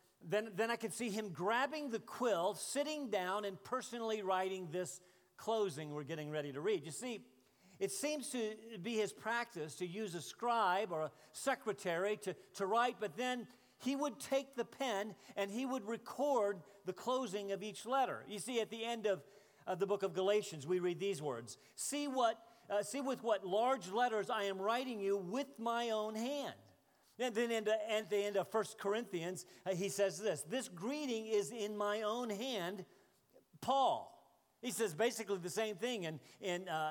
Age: 50-69